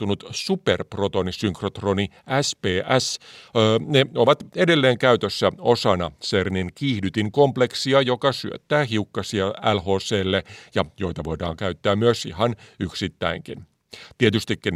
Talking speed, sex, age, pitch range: 90 wpm, male, 50-69, 95-130 Hz